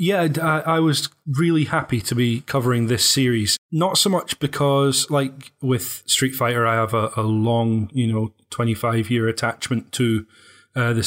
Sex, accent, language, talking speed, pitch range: male, British, English, 165 wpm, 115-130 Hz